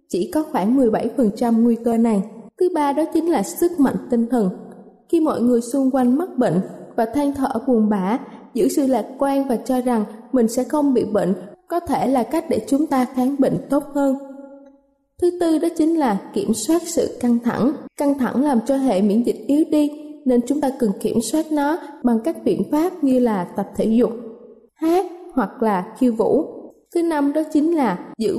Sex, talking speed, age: female, 205 wpm, 20-39